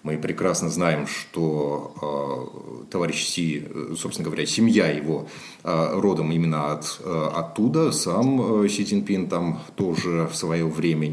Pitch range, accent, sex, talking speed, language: 80-95 Hz, native, male, 115 wpm, Russian